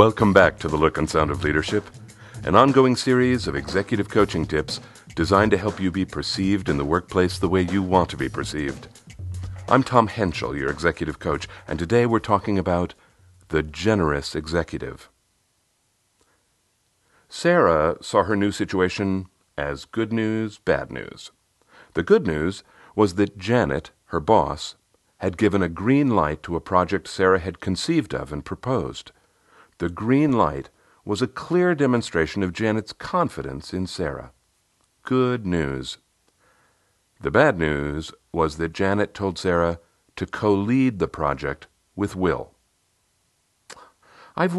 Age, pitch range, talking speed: 50-69, 85-110 Hz, 145 wpm